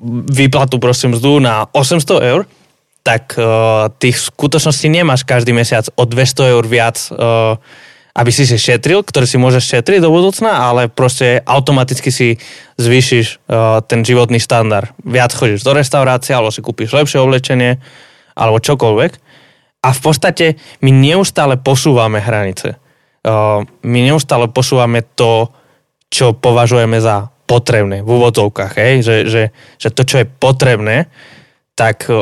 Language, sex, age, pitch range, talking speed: Slovak, male, 20-39, 115-140 Hz, 140 wpm